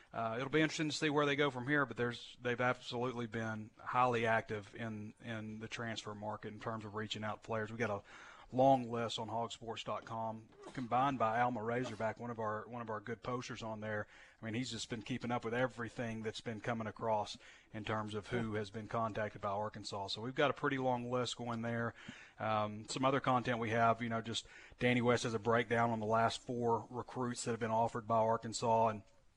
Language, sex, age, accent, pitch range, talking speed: English, male, 30-49, American, 110-120 Hz, 220 wpm